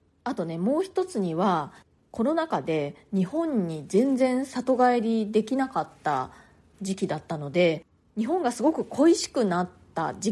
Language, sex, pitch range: Japanese, female, 175-255 Hz